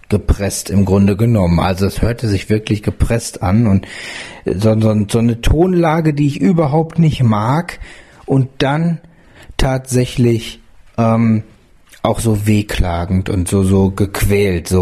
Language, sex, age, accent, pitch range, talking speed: German, male, 40-59, German, 105-135 Hz, 135 wpm